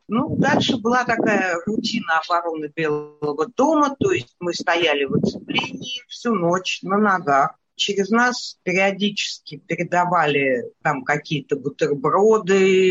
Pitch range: 150-200 Hz